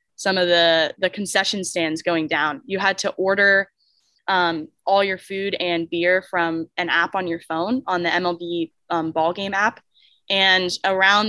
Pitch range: 165-195 Hz